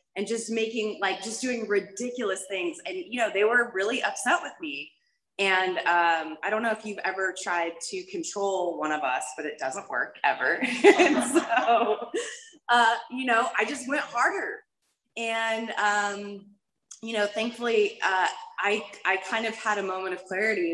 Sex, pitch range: female, 165-230 Hz